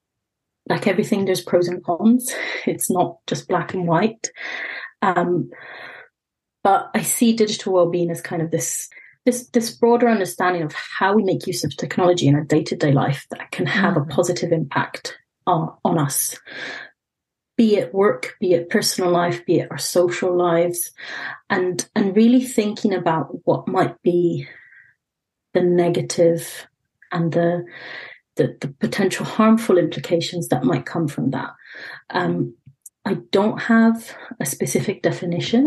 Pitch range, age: 170-205 Hz, 30-49